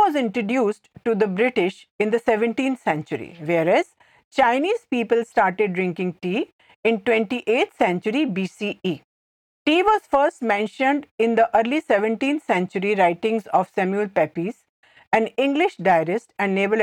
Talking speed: 130 wpm